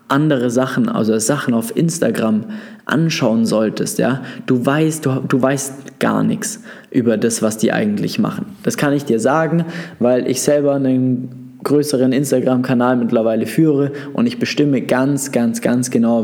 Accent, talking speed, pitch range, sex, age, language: German, 155 wpm, 120-155 Hz, male, 20-39, German